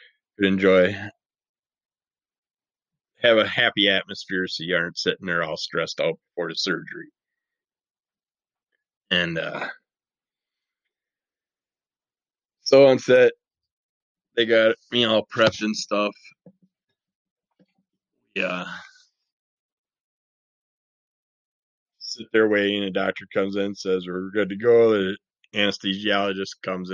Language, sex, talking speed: English, male, 105 wpm